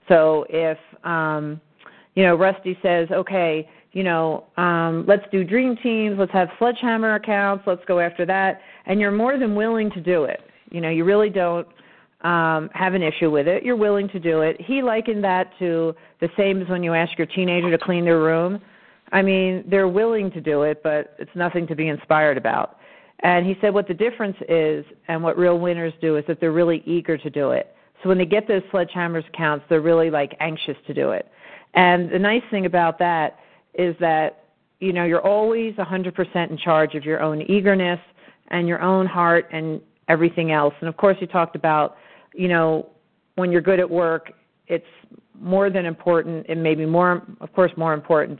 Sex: female